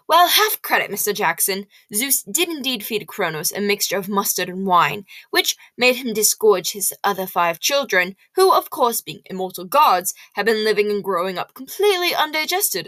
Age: 10-29